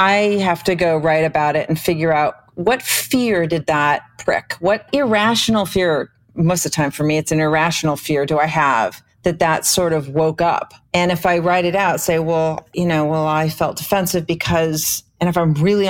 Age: 40-59